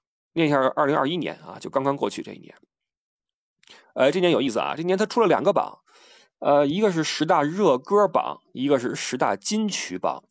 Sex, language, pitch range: male, Chinese, 150-205 Hz